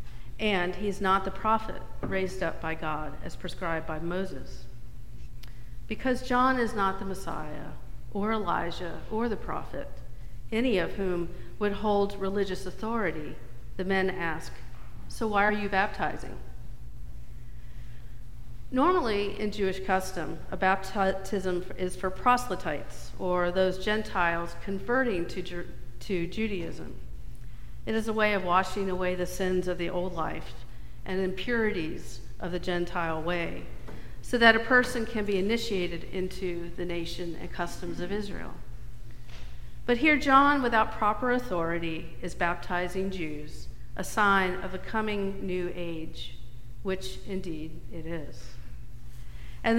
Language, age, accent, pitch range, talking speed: English, 50-69, American, 150-205 Hz, 130 wpm